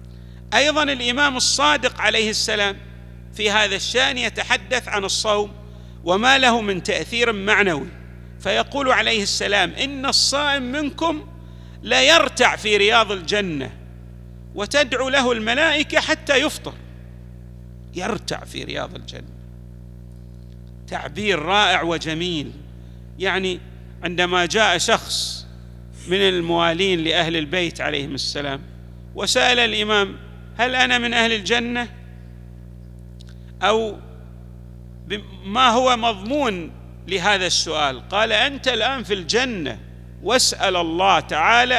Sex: male